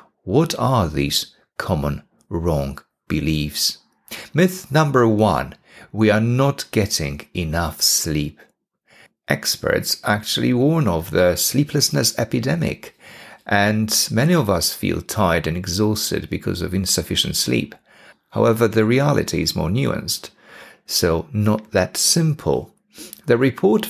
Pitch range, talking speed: 90-150 Hz, 115 wpm